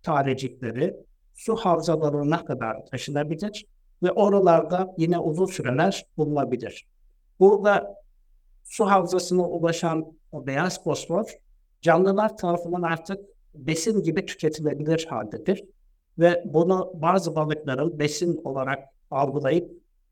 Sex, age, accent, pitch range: male, 60-79, native, 150-185 Hz